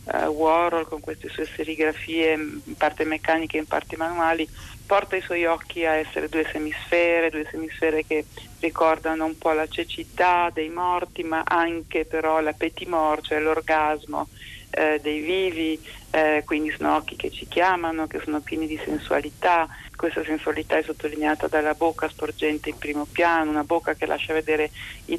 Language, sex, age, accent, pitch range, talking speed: Italian, female, 40-59, native, 155-165 Hz, 160 wpm